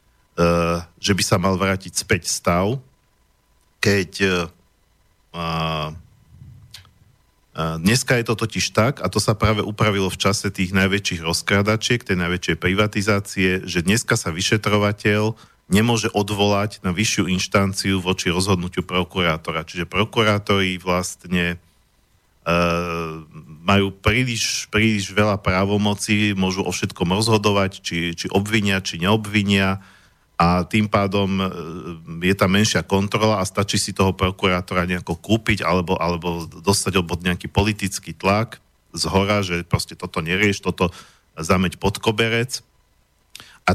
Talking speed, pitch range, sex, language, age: 125 wpm, 90-105 Hz, male, Slovak, 50-69